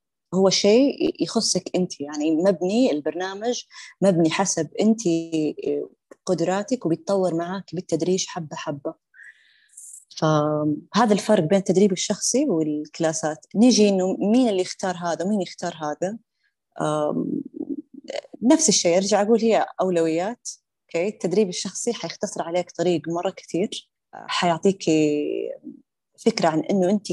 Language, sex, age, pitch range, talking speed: Arabic, female, 20-39, 165-215 Hz, 110 wpm